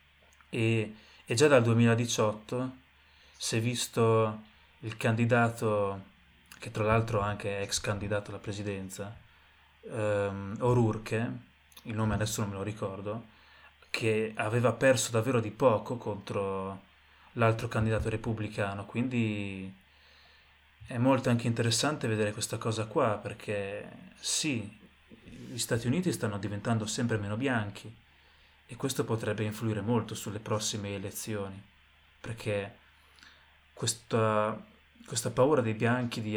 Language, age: Italian, 20-39